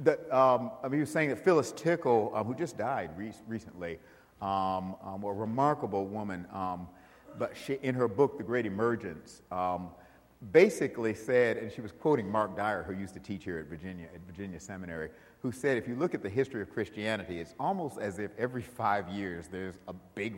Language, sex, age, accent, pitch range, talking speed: English, male, 50-69, American, 90-115 Hz, 205 wpm